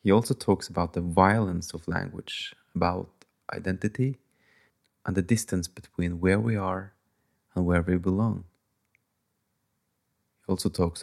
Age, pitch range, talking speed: 30-49, 90-105 Hz, 130 wpm